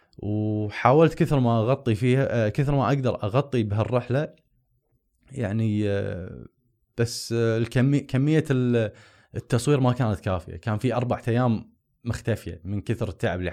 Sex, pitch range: male, 95-125 Hz